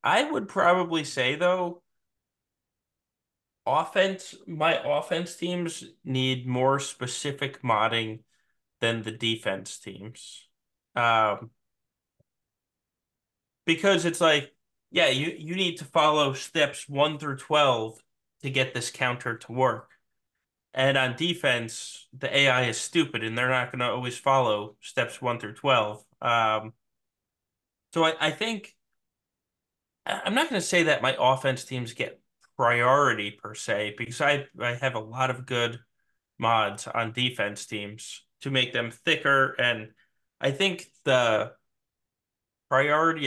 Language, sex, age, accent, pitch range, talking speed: English, male, 20-39, American, 120-145 Hz, 130 wpm